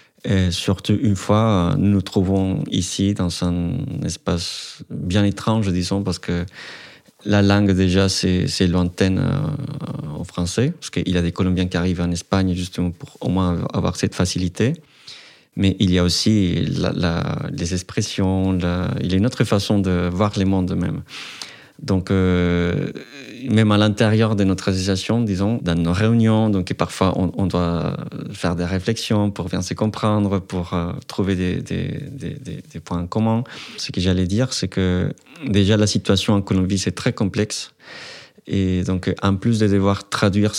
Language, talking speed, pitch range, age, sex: French, 175 wpm, 90-105 Hz, 30-49, male